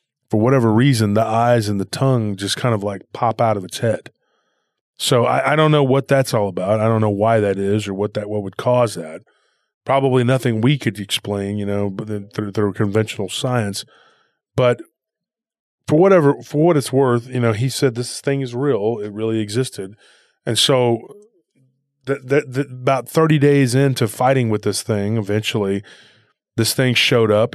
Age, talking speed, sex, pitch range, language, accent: 30-49, 185 wpm, male, 105-135 Hz, English, American